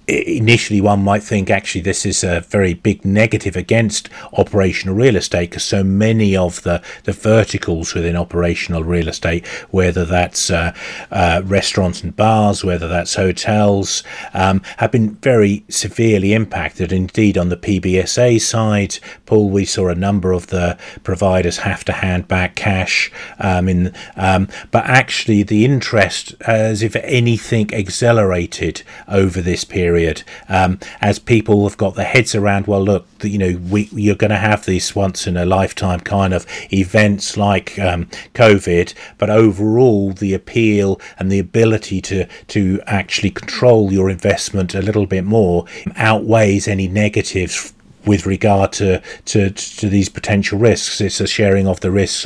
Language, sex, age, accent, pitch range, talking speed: English, male, 40-59, British, 95-105 Hz, 155 wpm